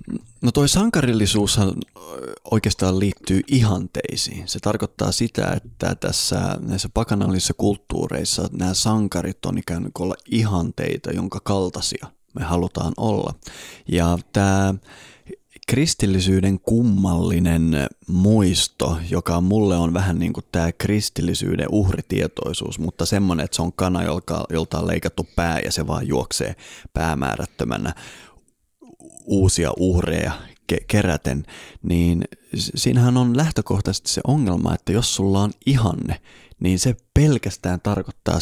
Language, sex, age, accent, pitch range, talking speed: Finnish, male, 30-49, native, 85-105 Hz, 115 wpm